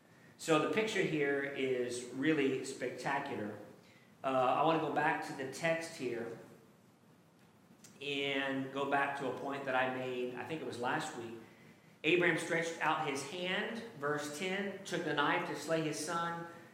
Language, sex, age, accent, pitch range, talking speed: English, male, 40-59, American, 120-150 Hz, 165 wpm